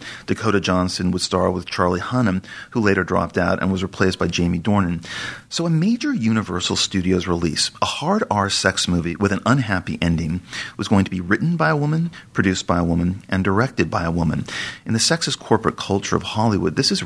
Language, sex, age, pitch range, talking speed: English, male, 40-59, 90-110 Hz, 205 wpm